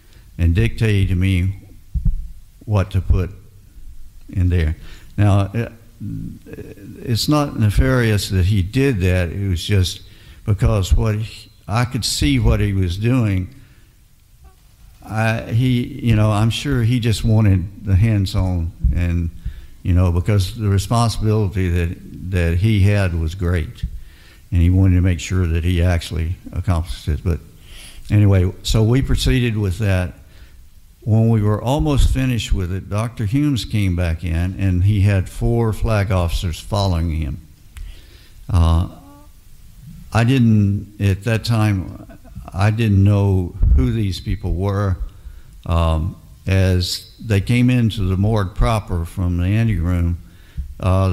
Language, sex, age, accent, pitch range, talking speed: English, male, 60-79, American, 90-105 Hz, 140 wpm